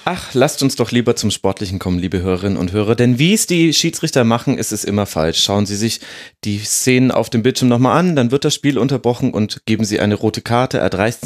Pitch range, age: 100-135 Hz, 30-49